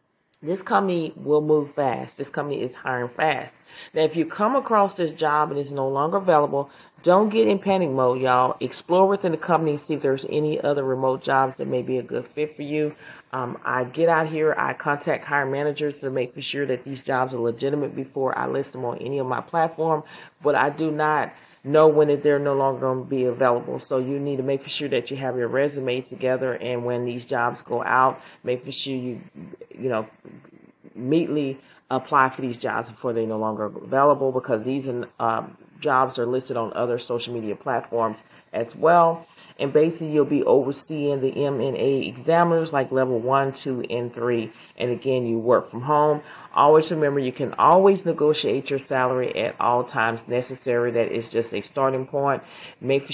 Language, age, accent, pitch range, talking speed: English, 30-49, American, 125-150 Hz, 190 wpm